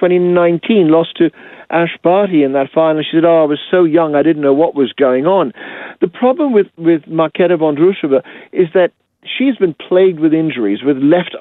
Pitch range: 145-185 Hz